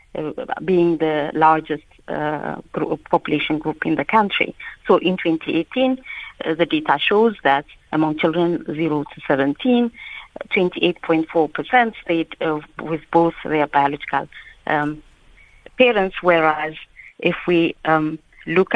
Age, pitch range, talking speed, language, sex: 40-59, 150-175 Hz, 115 wpm, English, female